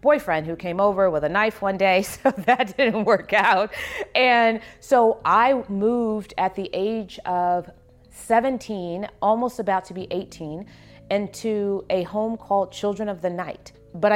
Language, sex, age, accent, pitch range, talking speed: English, female, 40-59, American, 170-205 Hz, 155 wpm